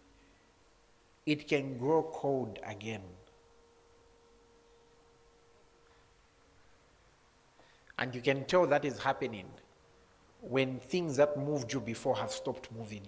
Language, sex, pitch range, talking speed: English, male, 105-140 Hz, 95 wpm